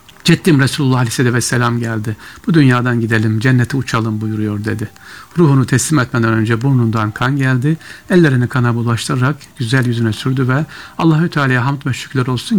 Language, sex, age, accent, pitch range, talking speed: Turkish, male, 60-79, native, 120-160 Hz, 155 wpm